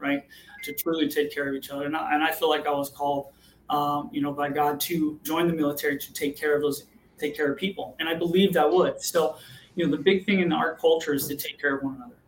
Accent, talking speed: American, 270 wpm